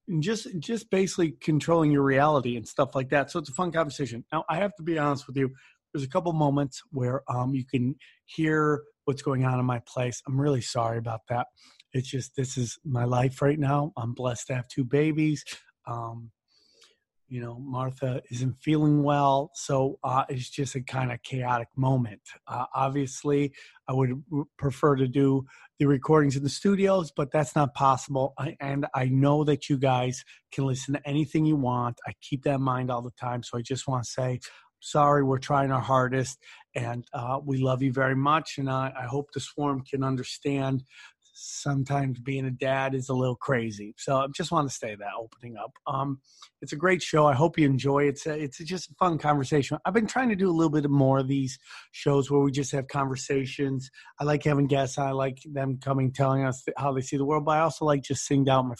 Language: English